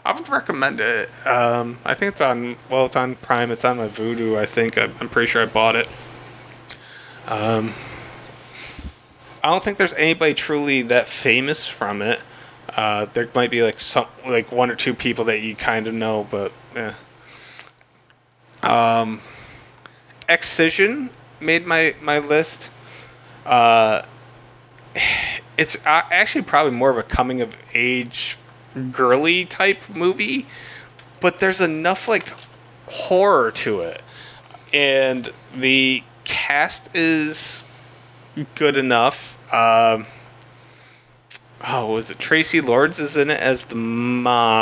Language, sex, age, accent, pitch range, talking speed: English, male, 20-39, American, 115-150 Hz, 130 wpm